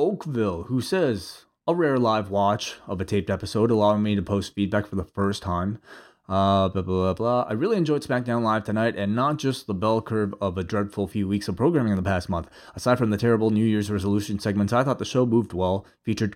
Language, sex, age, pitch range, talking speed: English, male, 20-39, 100-120 Hz, 215 wpm